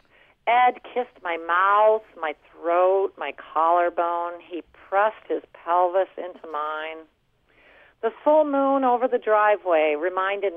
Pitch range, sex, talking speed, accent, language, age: 165-215 Hz, female, 120 wpm, American, English, 40-59